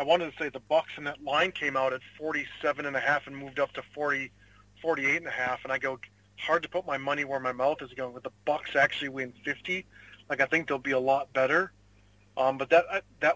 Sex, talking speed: male, 255 wpm